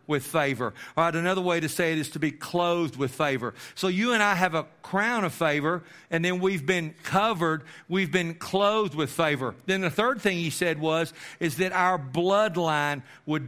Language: English